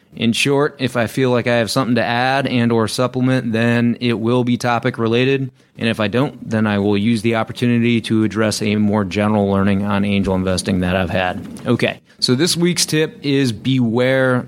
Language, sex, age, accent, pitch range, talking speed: English, male, 30-49, American, 105-130 Hz, 205 wpm